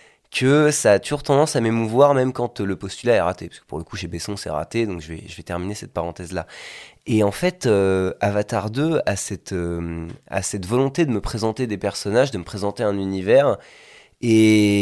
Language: French